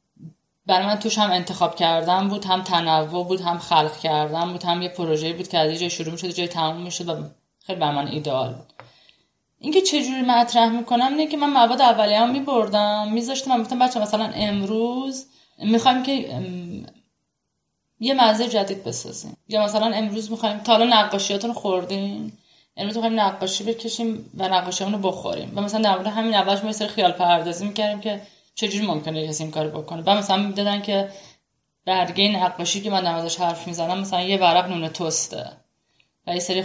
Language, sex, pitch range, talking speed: Persian, female, 175-220 Hz, 185 wpm